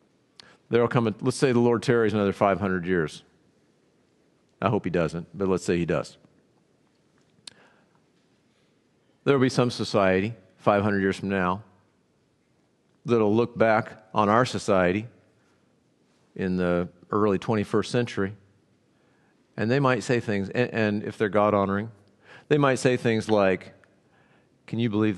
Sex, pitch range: male, 100-125 Hz